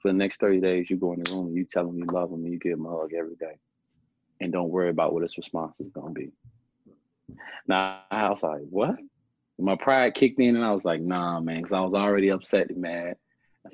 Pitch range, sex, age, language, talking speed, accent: 90-130 Hz, male, 30-49, English, 255 wpm, American